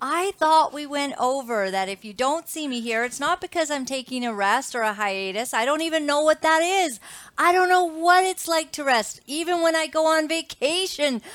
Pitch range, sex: 205-290 Hz, female